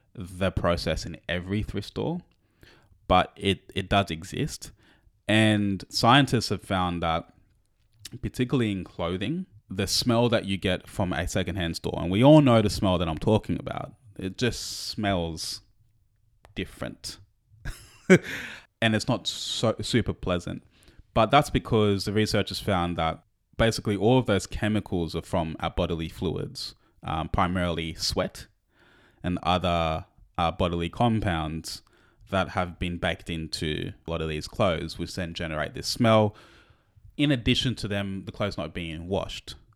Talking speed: 145 wpm